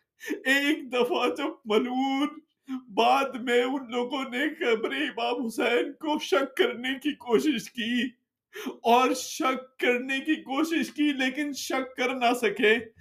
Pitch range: 200-300 Hz